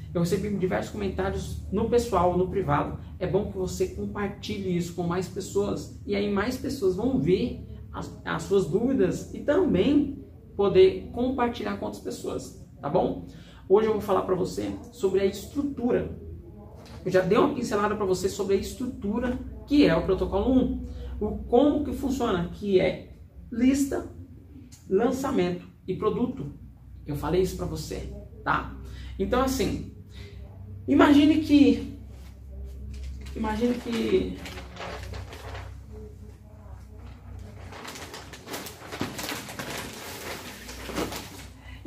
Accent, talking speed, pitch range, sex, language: Brazilian, 120 wpm, 130-210 Hz, male, Portuguese